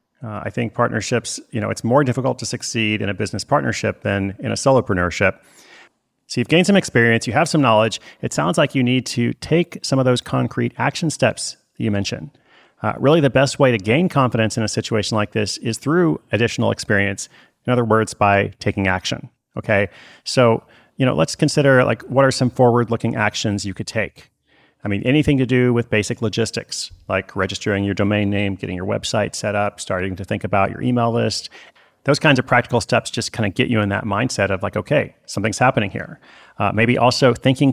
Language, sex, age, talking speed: English, male, 30-49, 210 wpm